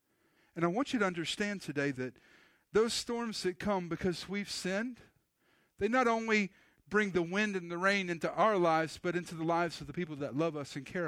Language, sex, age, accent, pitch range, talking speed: English, male, 50-69, American, 145-220 Hz, 210 wpm